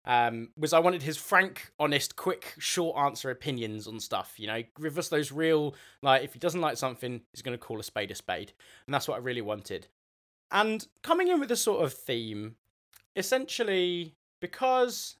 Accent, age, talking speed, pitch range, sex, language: British, 20-39, 190 wpm, 120-175 Hz, male, English